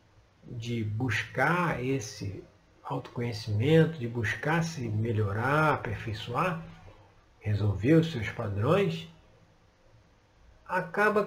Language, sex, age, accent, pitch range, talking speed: Portuguese, male, 50-69, Brazilian, 110-160 Hz, 75 wpm